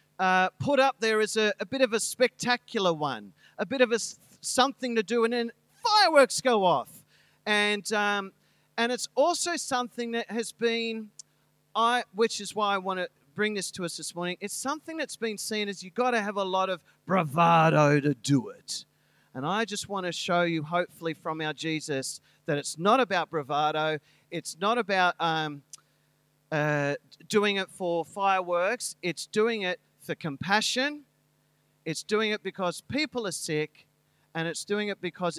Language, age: English, 40-59